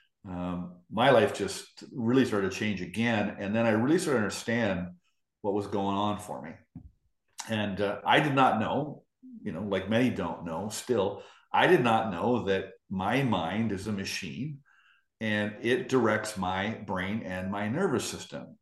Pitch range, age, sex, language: 95-115 Hz, 50-69, male, English